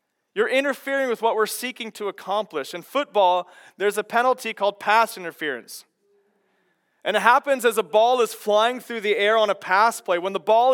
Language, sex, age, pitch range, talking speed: English, male, 30-49, 220-260 Hz, 190 wpm